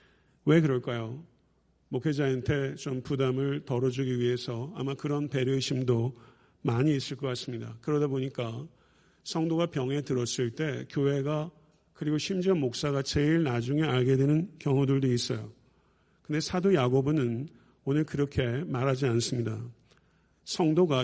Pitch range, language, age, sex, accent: 130-150 Hz, Korean, 50-69, male, native